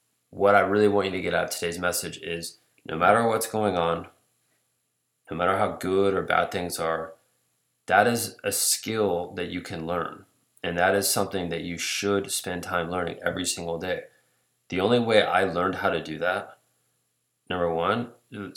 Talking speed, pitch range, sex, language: 185 wpm, 85-100 Hz, male, English